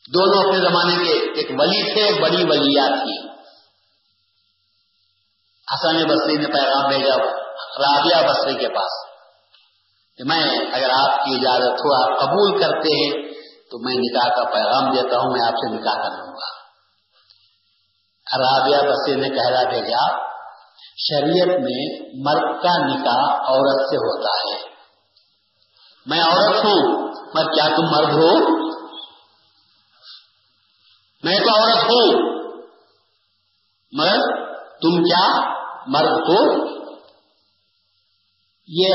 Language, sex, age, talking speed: Urdu, male, 50-69, 110 wpm